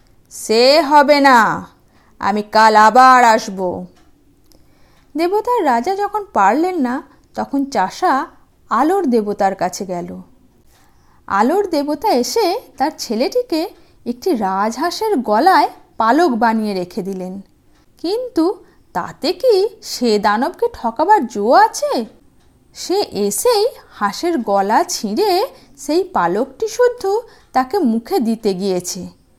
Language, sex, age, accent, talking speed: Bengali, female, 50-69, native, 100 wpm